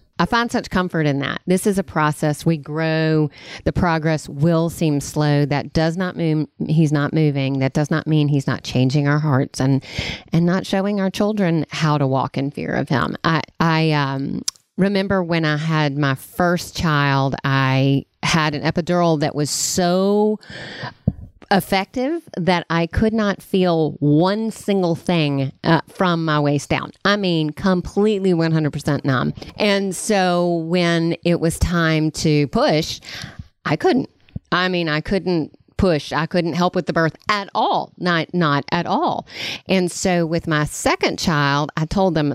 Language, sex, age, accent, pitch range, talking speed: English, female, 40-59, American, 150-185 Hz, 165 wpm